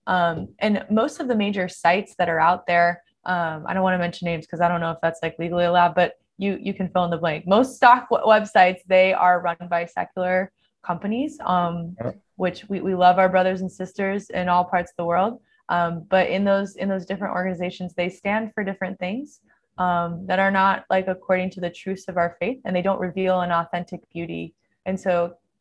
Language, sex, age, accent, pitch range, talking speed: English, female, 20-39, American, 175-195 Hz, 220 wpm